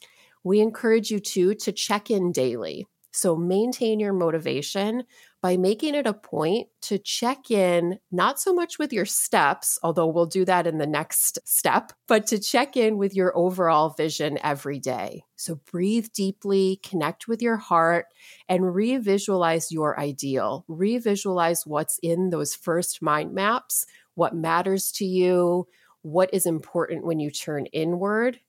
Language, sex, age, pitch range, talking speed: English, female, 30-49, 165-215 Hz, 155 wpm